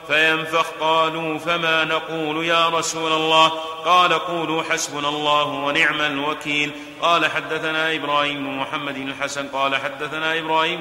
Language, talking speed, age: Arabic, 130 wpm, 30-49